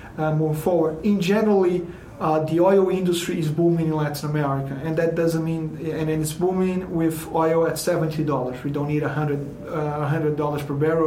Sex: male